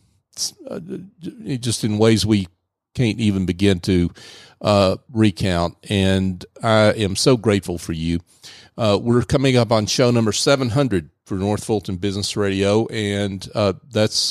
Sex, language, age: male, English, 40-59